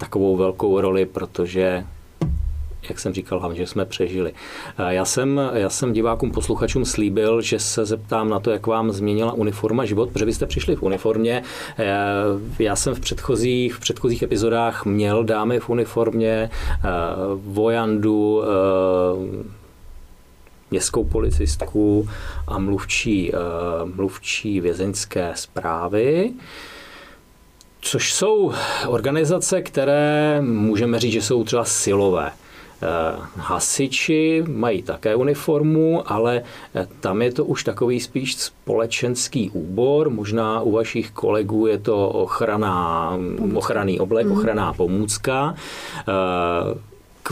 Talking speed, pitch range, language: 110 wpm, 95-120 Hz, English